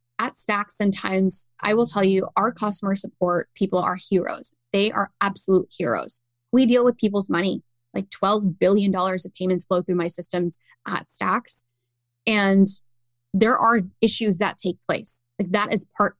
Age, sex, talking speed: 10-29, female, 165 wpm